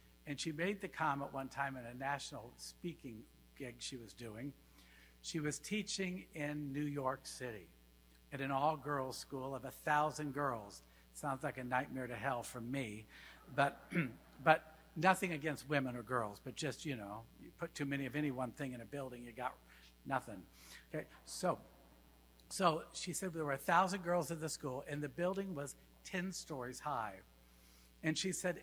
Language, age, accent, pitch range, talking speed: English, 60-79, American, 120-160 Hz, 175 wpm